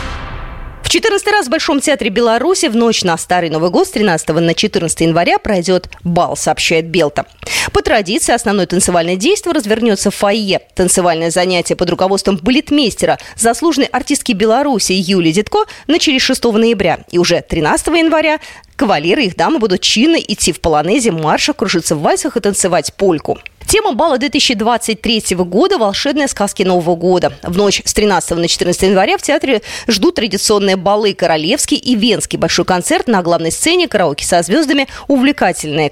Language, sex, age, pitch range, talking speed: Russian, female, 30-49, 175-280 Hz, 155 wpm